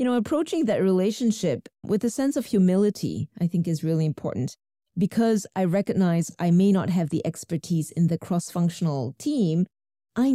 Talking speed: 170 wpm